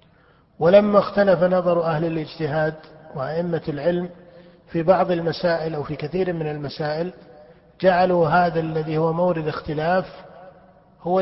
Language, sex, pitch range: Arabic, male, 160-180 Hz